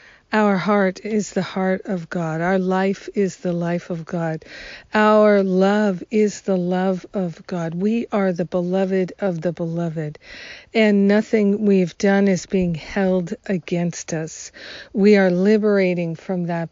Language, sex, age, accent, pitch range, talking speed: English, female, 50-69, American, 175-205 Hz, 150 wpm